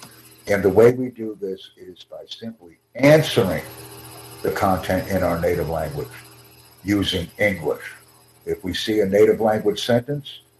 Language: English